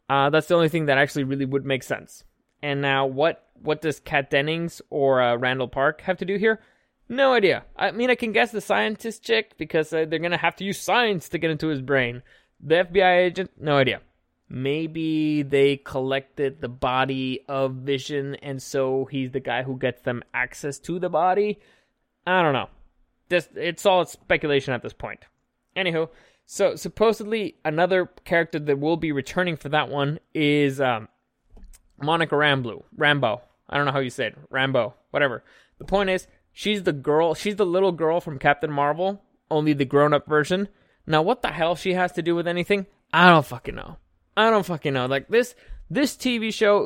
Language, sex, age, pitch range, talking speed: English, male, 20-39, 140-185 Hz, 190 wpm